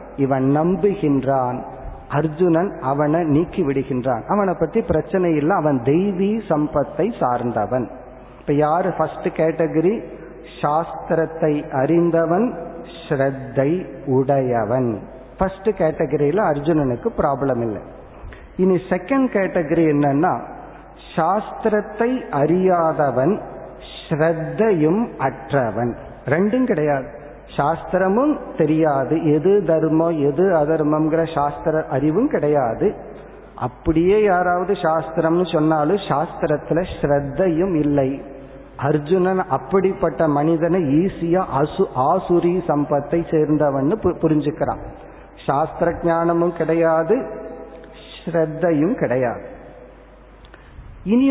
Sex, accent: male, native